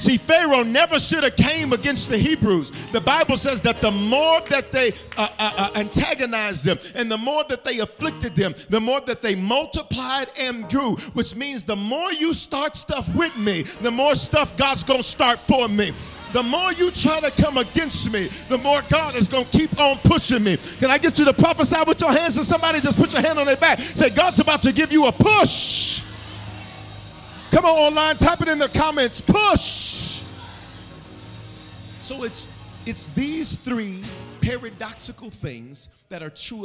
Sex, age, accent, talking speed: male, 40-59, American, 190 wpm